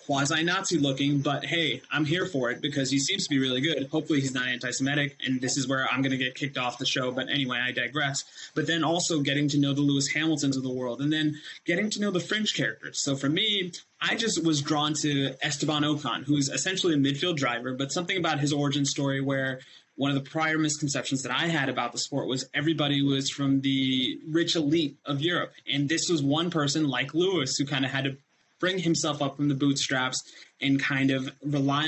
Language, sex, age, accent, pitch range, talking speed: English, male, 20-39, American, 135-155 Hz, 225 wpm